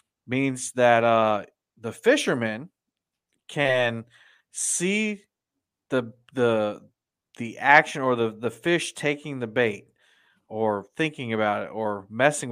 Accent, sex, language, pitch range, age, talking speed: American, male, English, 110-130 Hz, 40-59, 115 wpm